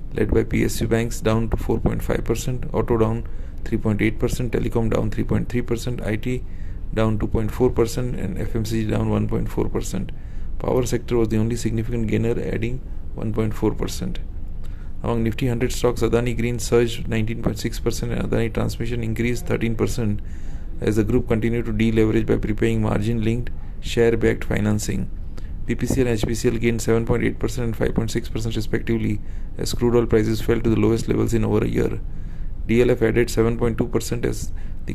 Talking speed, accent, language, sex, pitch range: 135 wpm, Indian, English, male, 105-120 Hz